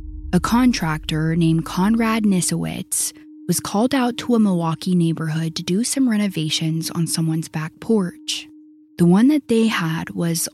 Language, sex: English, female